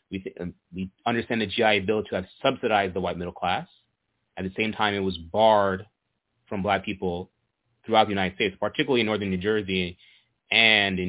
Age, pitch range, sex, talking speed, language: 30-49, 95-115 Hz, male, 180 wpm, English